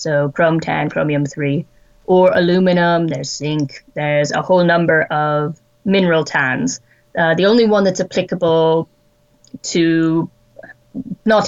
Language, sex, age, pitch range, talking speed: English, female, 20-39, 160-185 Hz, 120 wpm